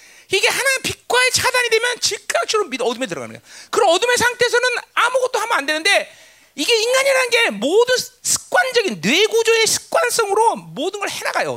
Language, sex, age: Korean, male, 40-59